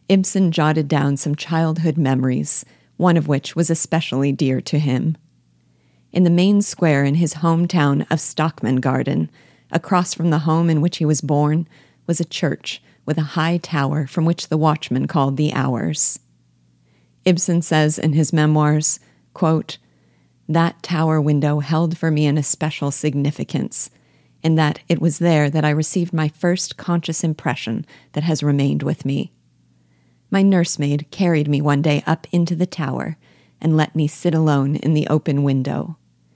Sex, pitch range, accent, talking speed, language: female, 135-160 Hz, American, 160 wpm, English